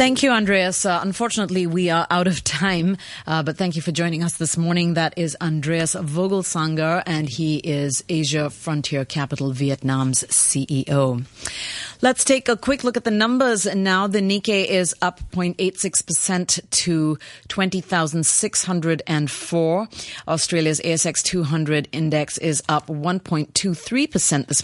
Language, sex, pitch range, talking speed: English, female, 140-185 Hz, 135 wpm